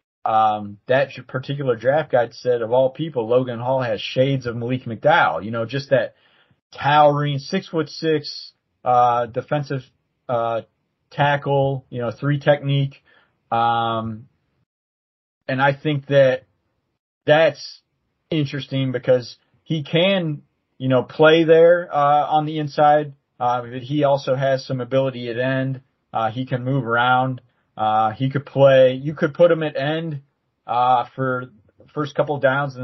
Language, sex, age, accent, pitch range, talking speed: English, male, 30-49, American, 120-140 Hz, 145 wpm